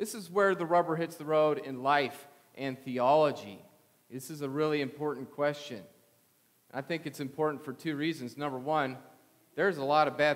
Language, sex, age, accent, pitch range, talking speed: English, male, 40-59, American, 135-160 Hz, 185 wpm